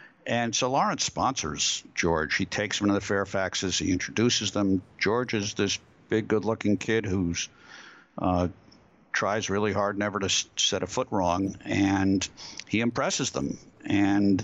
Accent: American